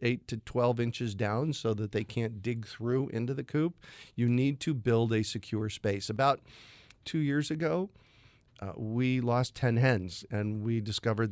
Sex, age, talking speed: male, 40-59, 175 wpm